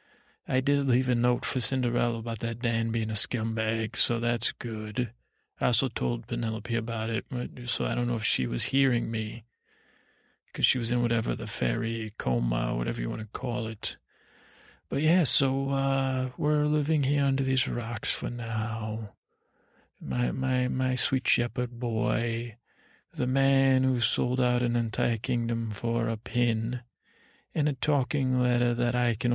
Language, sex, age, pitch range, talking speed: English, male, 40-59, 110-135 Hz, 165 wpm